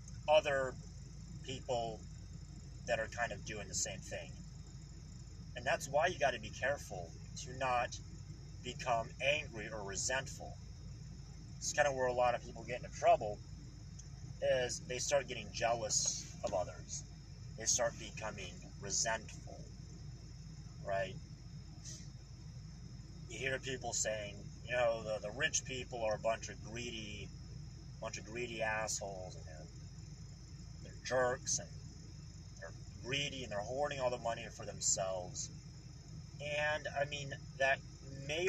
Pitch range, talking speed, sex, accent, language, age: 120-140 Hz, 130 wpm, male, American, English, 30-49